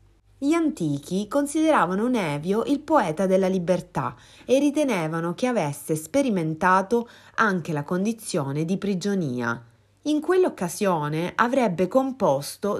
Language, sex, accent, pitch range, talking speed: Italian, female, native, 155-240 Hz, 105 wpm